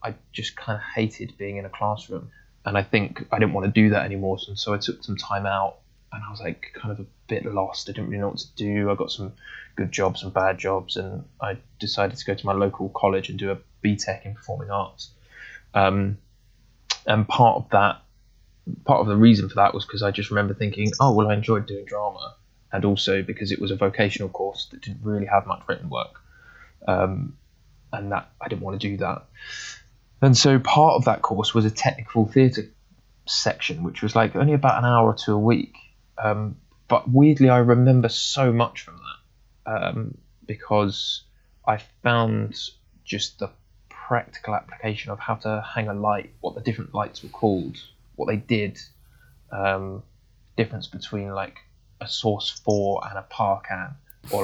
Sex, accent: male, British